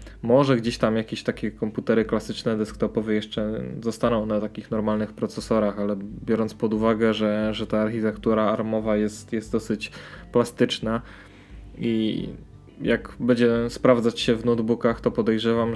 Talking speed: 135 wpm